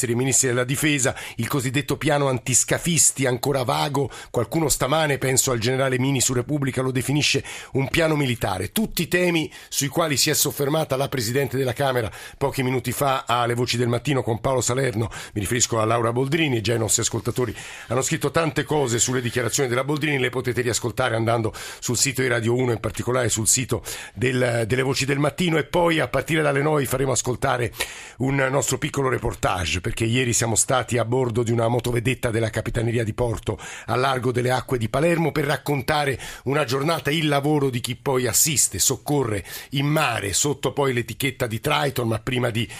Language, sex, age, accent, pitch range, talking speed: Italian, male, 50-69, native, 120-145 Hz, 185 wpm